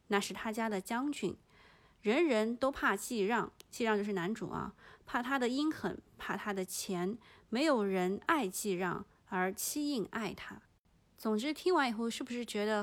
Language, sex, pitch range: Chinese, female, 185-245 Hz